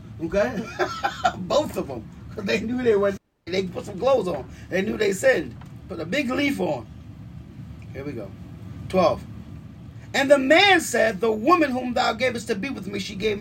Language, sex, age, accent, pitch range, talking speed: English, male, 30-49, American, 165-210 Hz, 190 wpm